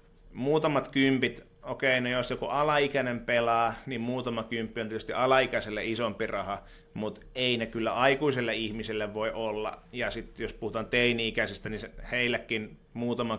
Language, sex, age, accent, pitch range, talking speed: Finnish, male, 30-49, native, 115-150 Hz, 150 wpm